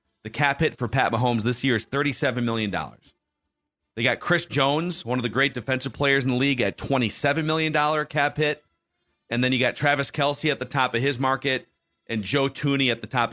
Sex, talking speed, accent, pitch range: male, 210 wpm, American, 110-140 Hz